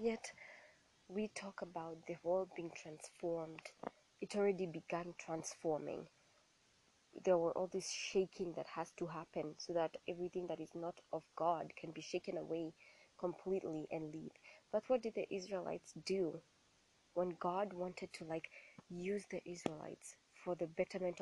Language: English